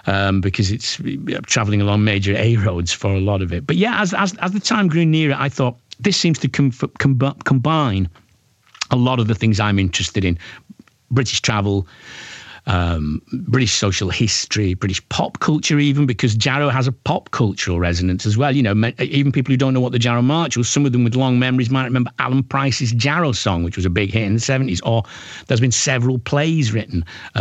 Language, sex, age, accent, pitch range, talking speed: English, male, 50-69, British, 105-145 Hz, 205 wpm